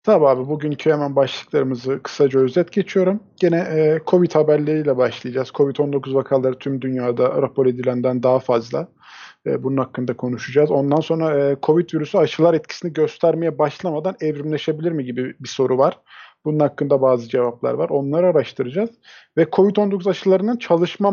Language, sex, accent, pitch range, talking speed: Turkish, male, native, 135-190 Hz, 135 wpm